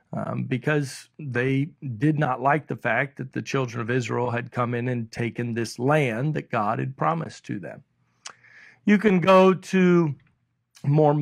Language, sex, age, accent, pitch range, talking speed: English, male, 50-69, American, 130-170 Hz, 165 wpm